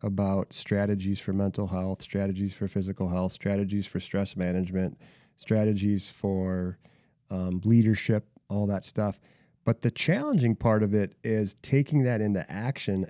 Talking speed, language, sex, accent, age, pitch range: 140 wpm, English, male, American, 30-49, 105-140 Hz